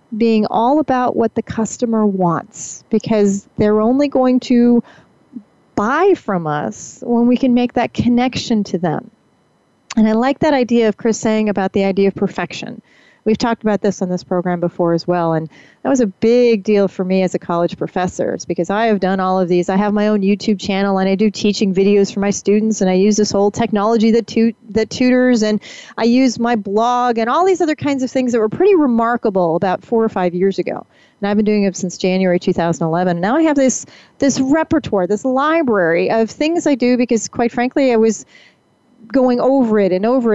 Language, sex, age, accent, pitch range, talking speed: English, female, 40-59, American, 200-255 Hz, 210 wpm